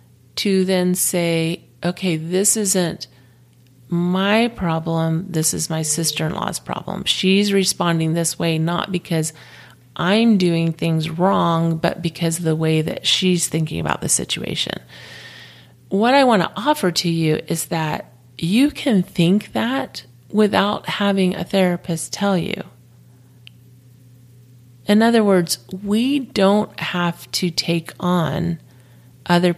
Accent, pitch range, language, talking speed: American, 150-195 Hz, English, 130 wpm